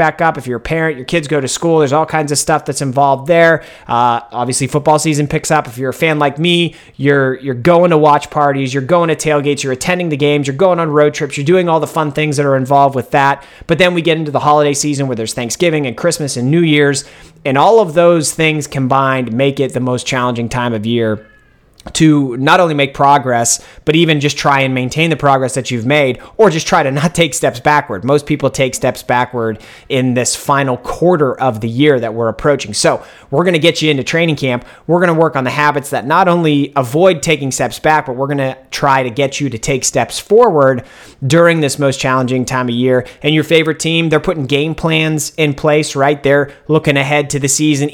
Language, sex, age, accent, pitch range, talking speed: English, male, 30-49, American, 130-160 Hz, 235 wpm